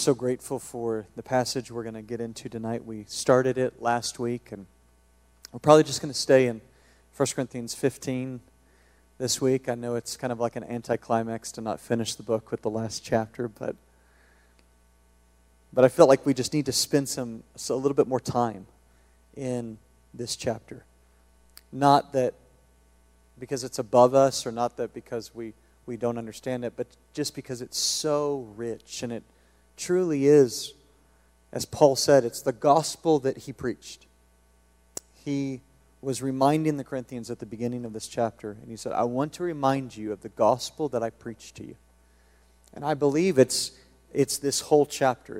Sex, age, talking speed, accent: male, 40-59, 180 wpm, American